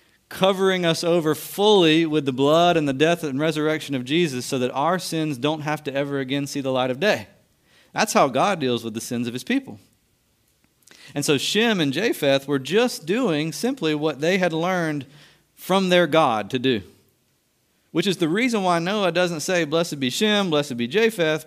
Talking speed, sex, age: 195 wpm, male, 40-59